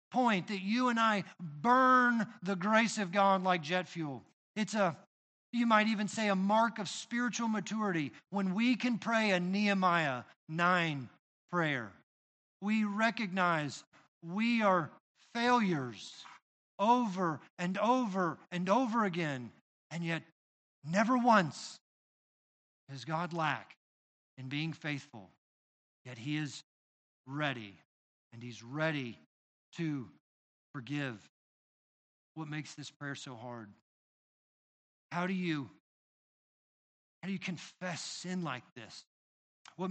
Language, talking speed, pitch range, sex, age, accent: English, 120 wpm, 130-200 Hz, male, 50-69, American